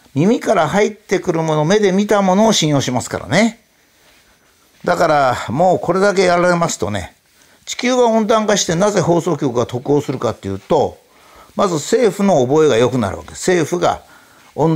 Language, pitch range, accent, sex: Japanese, 140-195 Hz, native, male